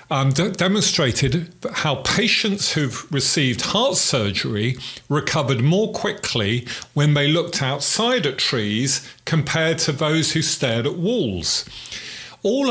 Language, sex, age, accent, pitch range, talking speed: English, male, 40-59, British, 125-180 Hz, 120 wpm